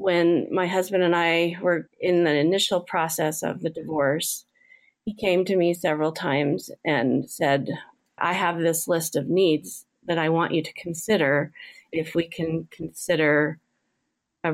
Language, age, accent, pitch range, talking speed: English, 30-49, American, 160-195 Hz, 155 wpm